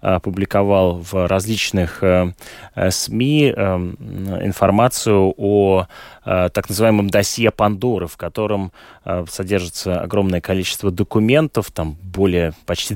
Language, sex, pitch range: Russian, male, 90-105 Hz